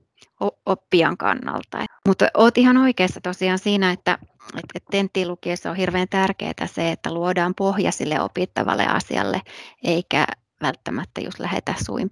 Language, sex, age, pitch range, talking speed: Finnish, female, 30-49, 180-210 Hz, 130 wpm